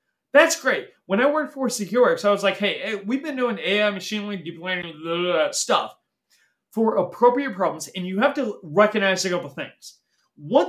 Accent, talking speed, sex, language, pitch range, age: American, 210 wpm, male, English, 170-260 Hz, 30-49